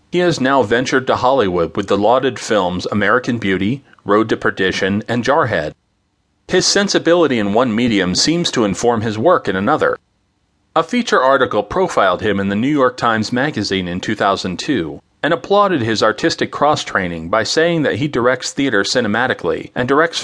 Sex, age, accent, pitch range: male, 40-59, American, 100-155 Hz